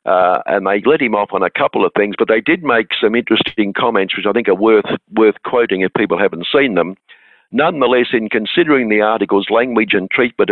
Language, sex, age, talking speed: English, male, 60-79, 215 wpm